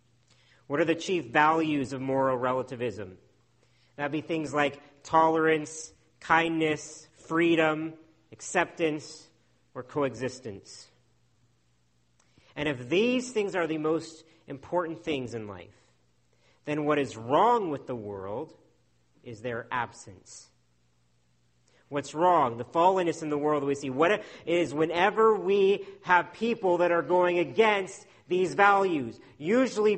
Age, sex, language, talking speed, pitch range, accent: 40-59, male, English, 125 wpm, 120-175 Hz, American